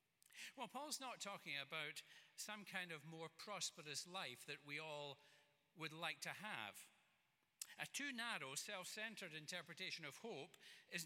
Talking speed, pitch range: 140 wpm, 150-200 Hz